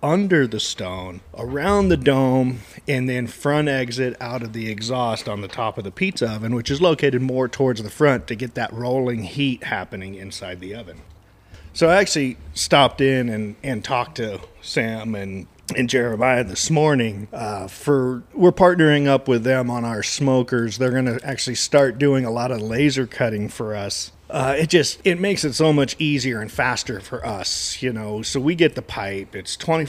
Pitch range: 115-145 Hz